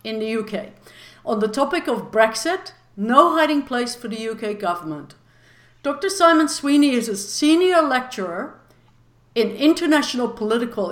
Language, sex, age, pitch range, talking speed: English, female, 60-79, 215-280 Hz, 135 wpm